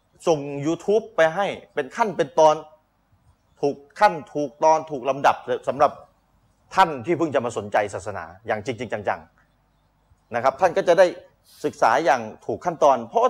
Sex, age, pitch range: male, 30-49, 130-165 Hz